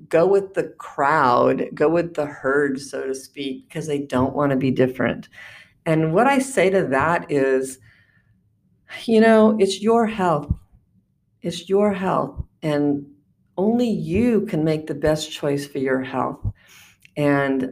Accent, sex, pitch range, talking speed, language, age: American, female, 135-195 Hz, 150 wpm, English, 50-69